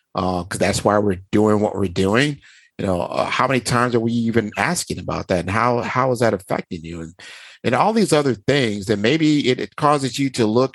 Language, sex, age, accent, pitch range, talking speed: English, male, 50-69, American, 100-125 Hz, 235 wpm